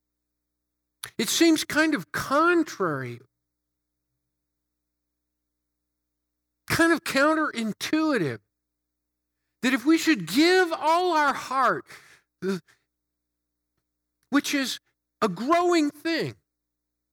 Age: 50-69